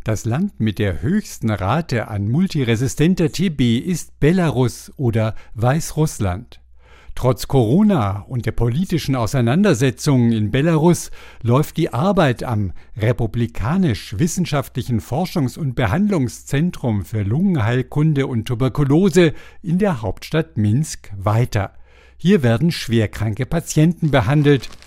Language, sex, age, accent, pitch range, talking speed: German, male, 60-79, German, 115-160 Hz, 105 wpm